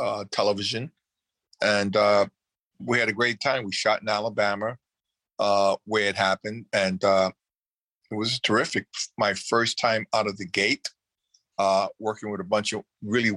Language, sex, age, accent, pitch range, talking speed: English, male, 50-69, American, 100-120 Hz, 160 wpm